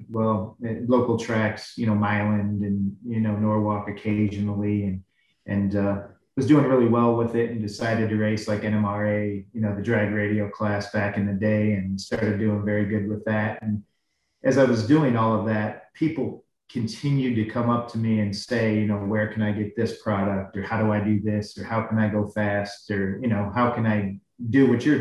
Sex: male